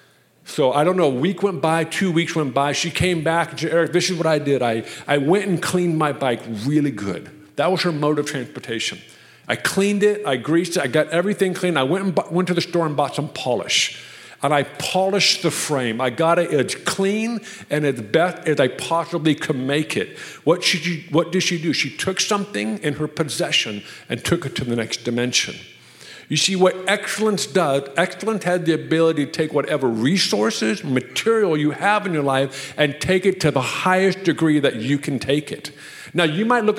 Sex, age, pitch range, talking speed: male, 50-69, 145-185 Hz, 215 wpm